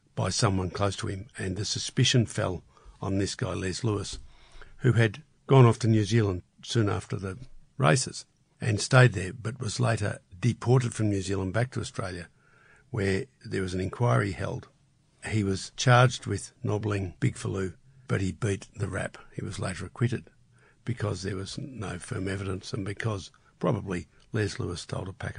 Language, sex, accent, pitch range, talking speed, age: English, male, Australian, 100-130 Hz, 175 wpm, 60-79